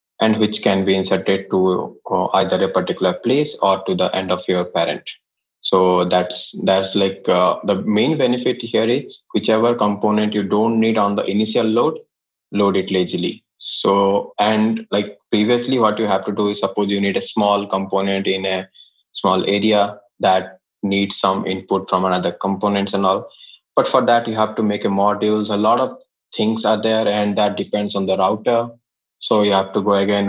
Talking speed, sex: 190 wpm, male